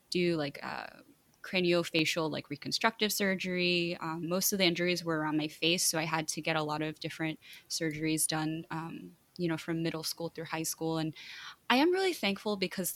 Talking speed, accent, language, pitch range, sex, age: 195 wpm, American, English, 155-185 Hz, female, 20-39